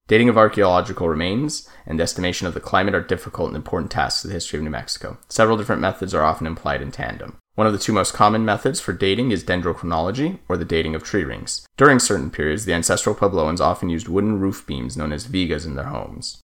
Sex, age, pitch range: male, 30-49, 80-105 Hz